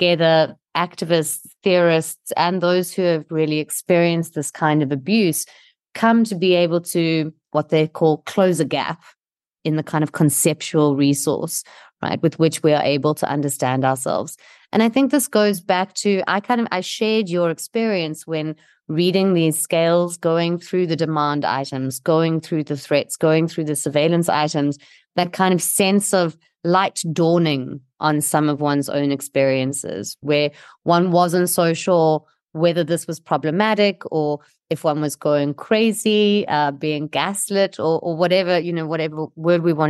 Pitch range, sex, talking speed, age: 150-180 Hz, female, 165 wpm, 30-49